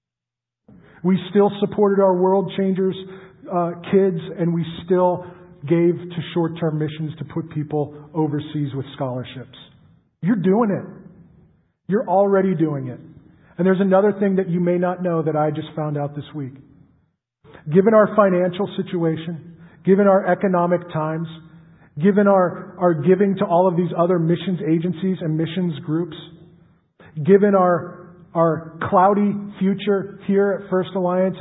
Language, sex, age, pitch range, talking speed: English, male, 40-59, 160-195 Hz, 145 wpm